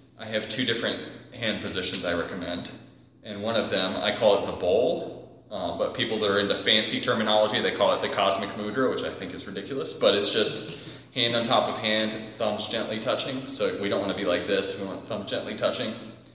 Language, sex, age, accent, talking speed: English, male, 30-49, American, 220 wpm